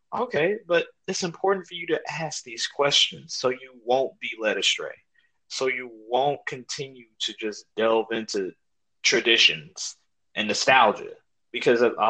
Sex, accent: male, American